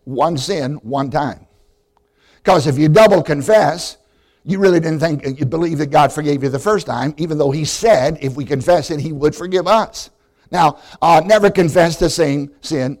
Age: 60-79